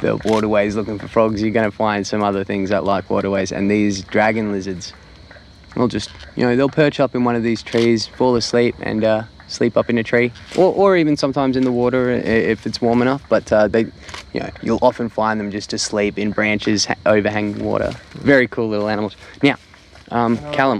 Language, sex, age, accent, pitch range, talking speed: English, male, 20-39, Australian, 100-120 Hz, 210 wpm